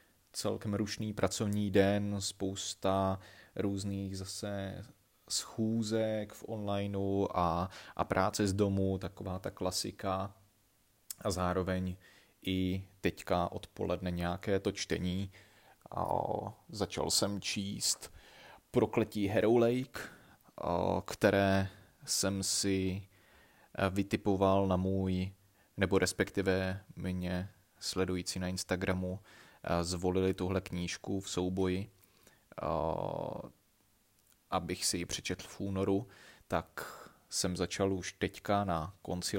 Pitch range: 90-100 Hz